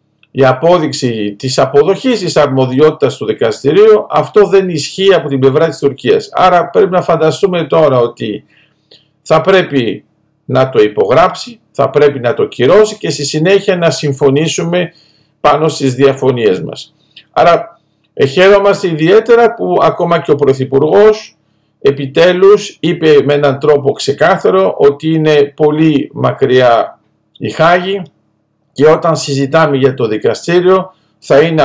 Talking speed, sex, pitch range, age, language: 130 wpm, male, 140-180 Hz, 50-69, Greek